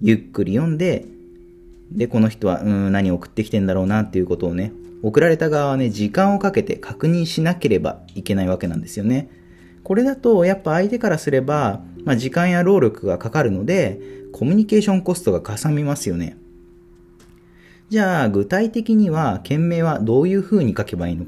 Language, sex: Japanese, male